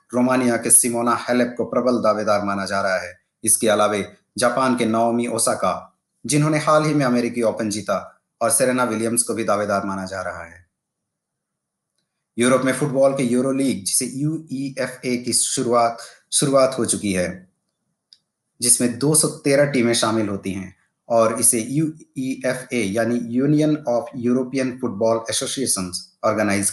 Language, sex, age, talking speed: Hindi, male, 30-49, 115 wpm